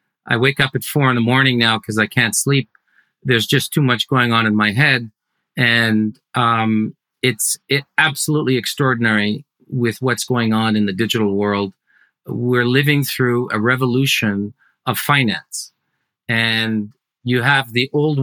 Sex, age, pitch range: male, 40-59, 115-140 Hz